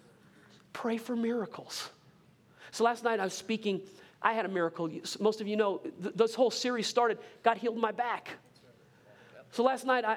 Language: English